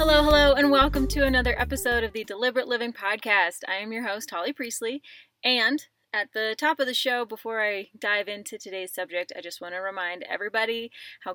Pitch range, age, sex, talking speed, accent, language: 190-250 Hz, 20-39, female, 200 wpm, American, English